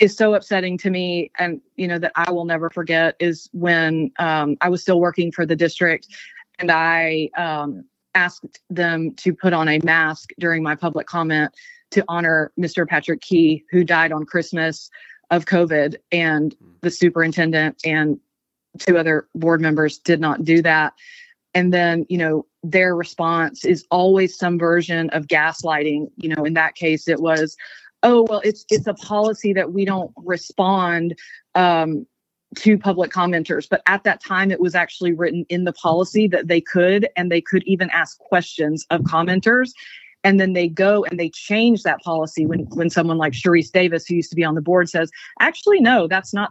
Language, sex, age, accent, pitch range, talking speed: English, female, 30-49, American, 160-185 Hz, 185 wpm